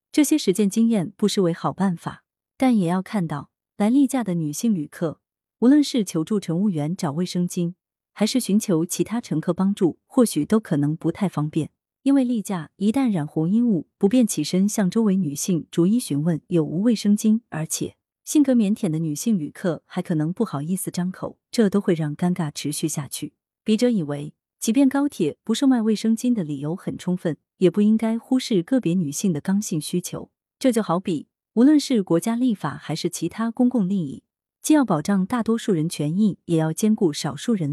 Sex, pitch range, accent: female, 165-220 Hz, native